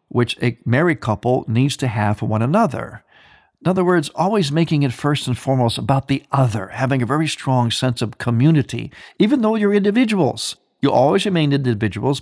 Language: English